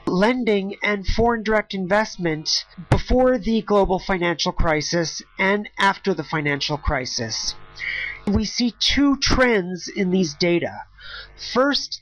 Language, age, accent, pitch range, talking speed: English, 40-59, American, 170-215 Hz, 115 wpm